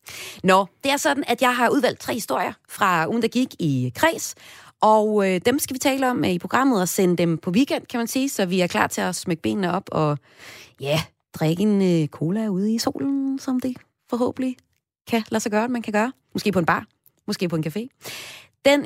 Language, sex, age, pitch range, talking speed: Danish, female, 30-49, 170-245 Hz, 225 wpm